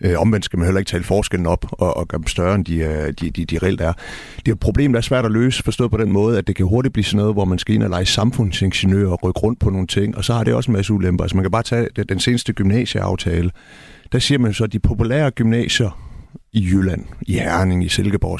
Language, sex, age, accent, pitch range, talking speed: Danish, male, 60-79, native, 95-120 Hz, 275 wpm